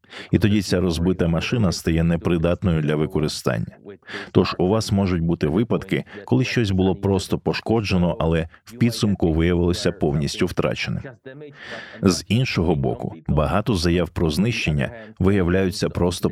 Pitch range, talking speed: 85-105 Hz, 130 wpm